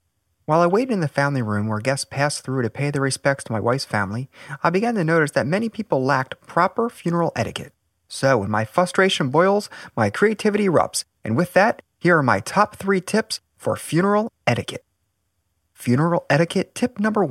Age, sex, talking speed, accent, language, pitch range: 30-49, male, 185 wpm, American, English, 110-170 Hz